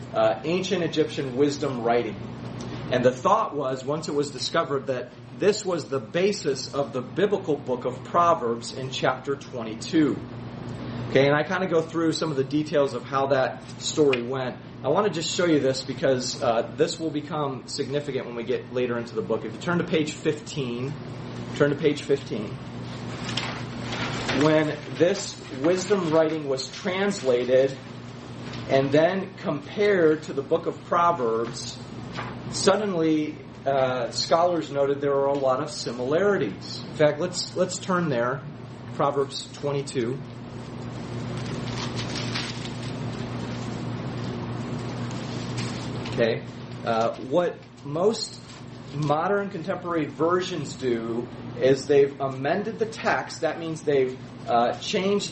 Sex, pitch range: male, 125-160 Hz